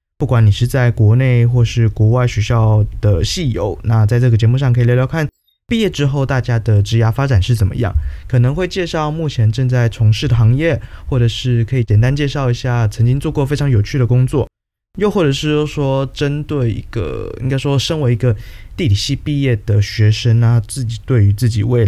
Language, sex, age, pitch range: Chinese, male, 20-39, 105-130 Hz